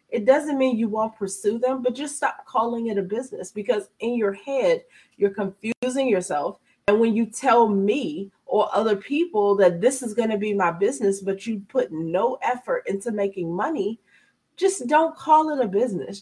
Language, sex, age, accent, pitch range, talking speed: English, female, 30-49, American, 190-250 Hz, 190 wpm